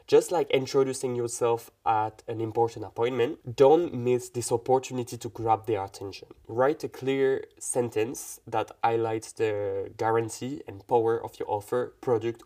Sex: male